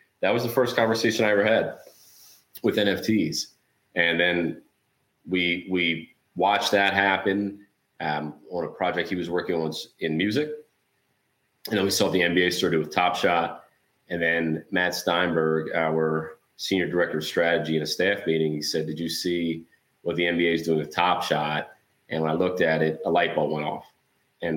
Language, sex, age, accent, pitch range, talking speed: English, male, 30-49, American, 80-90 Hz, 185 wpm